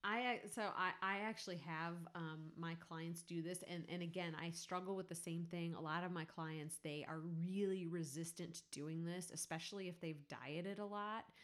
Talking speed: 200 wpm